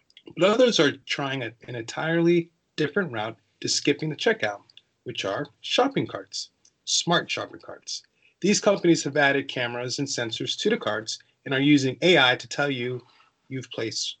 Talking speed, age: 145 wpm, 30-49